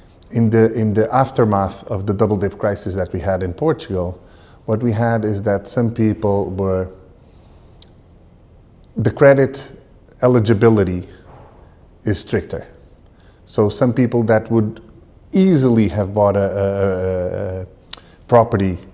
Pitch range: 95-115 Hz